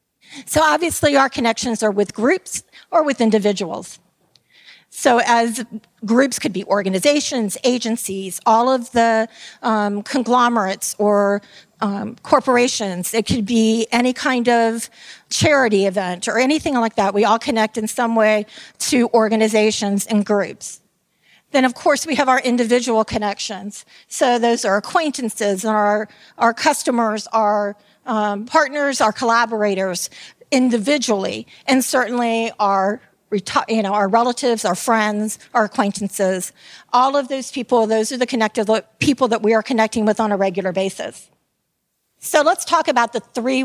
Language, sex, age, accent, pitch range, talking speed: English, female, 40-59, American, 210-250 Hz, 145 wpm